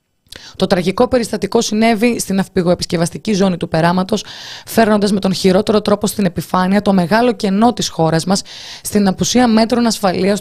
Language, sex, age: Greek, female, 20-39